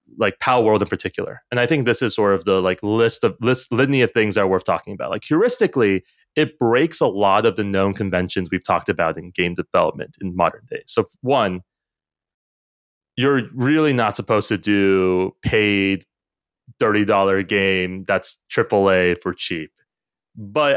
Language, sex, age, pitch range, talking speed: English, male, 30-49, 95-130 Hz, 175 wpm